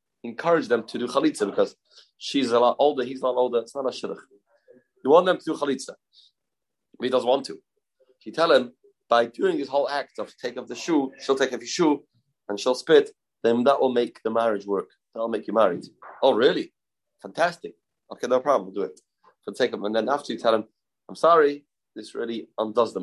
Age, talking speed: 30-49, 210 wpm